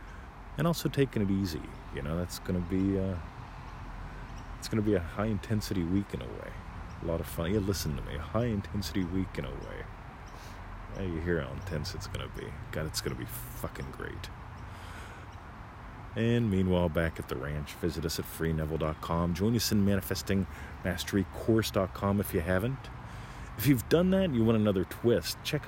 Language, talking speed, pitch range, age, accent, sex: English, 175 wpm, 90-120 Hz, 40-59, American, male